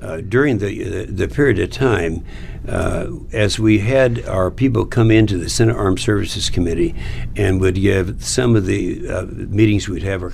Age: 60-79